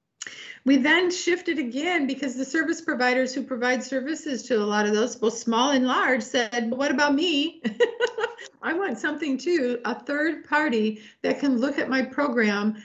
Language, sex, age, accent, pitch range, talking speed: English, female, 50-69, American, 220-270 Hz, 175 wpm